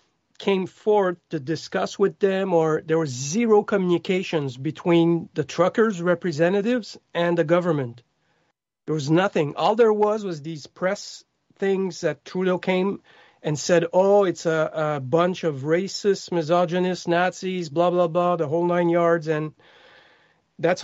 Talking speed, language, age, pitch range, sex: 145 wpm, English, 40-59, 160-195 Hz, male